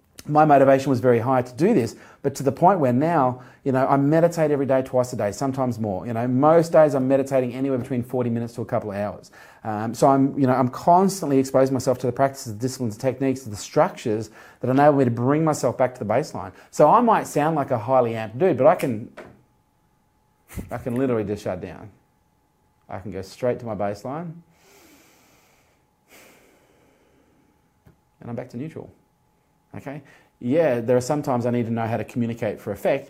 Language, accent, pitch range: English, Australian, 120-140 Hz